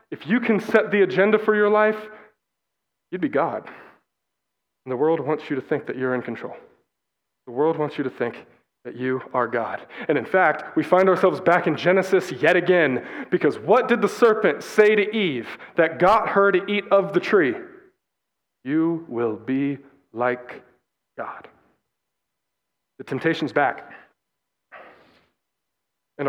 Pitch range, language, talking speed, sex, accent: 140-195 Hz, English, 155 wpm, male, American